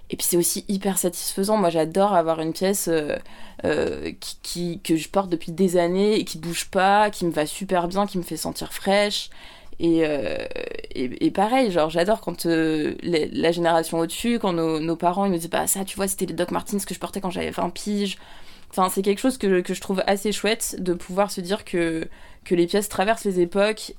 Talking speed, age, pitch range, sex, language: 230 wpm, 20-39, 165-200 Hz, female, French